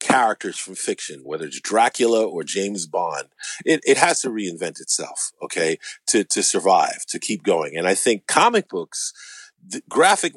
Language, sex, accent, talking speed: English, male, American, 170 wpm